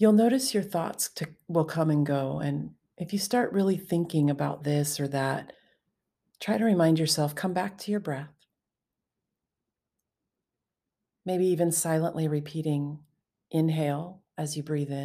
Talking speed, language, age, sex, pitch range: 140 wpm, English, 40-59, female, 145-170 Hz